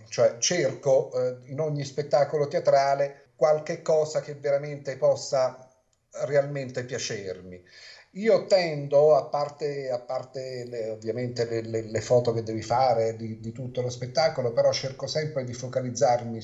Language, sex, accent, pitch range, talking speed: Italian, male, native, 115-140 Hz, 140 wpm